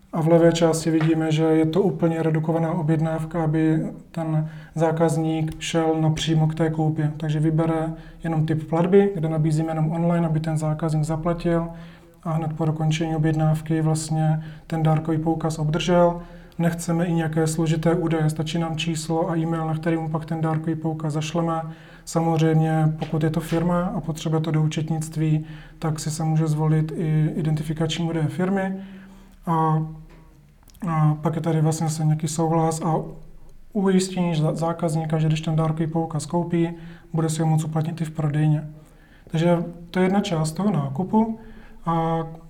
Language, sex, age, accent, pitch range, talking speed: Czech, male, 30-49, native, 155-165 Hz, 160 wpm